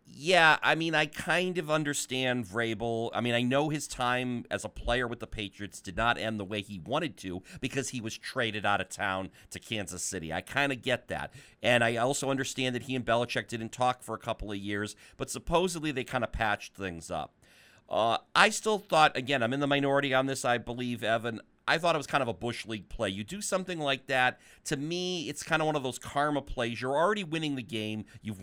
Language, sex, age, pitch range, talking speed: English, male, 40-59, 110-140 Hz, 235 wpm